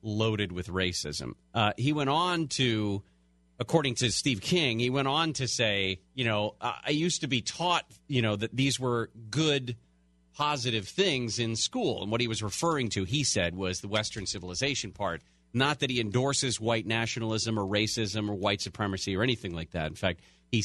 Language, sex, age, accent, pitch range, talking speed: English, male, 40-59, American, 95-130 Hz, 190 wpm